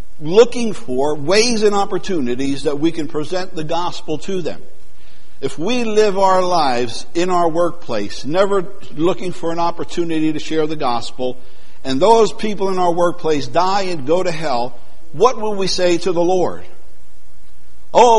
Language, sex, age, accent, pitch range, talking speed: English, male, 60-79, American, 145-190 Hz, 160 wpm